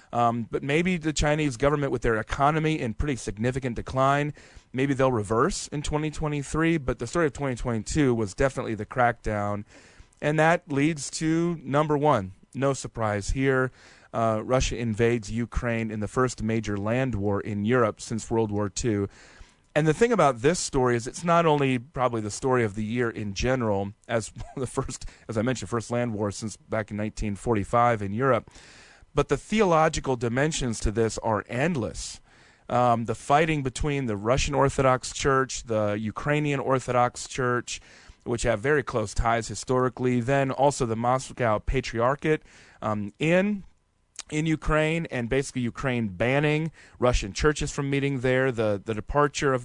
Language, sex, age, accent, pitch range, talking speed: English, male, 30-49, American, 115-145 Hz, 160 wpm